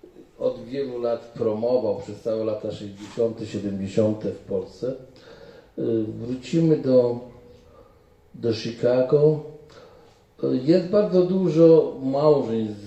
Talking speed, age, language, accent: 90 wpm, 40-59, Polish, native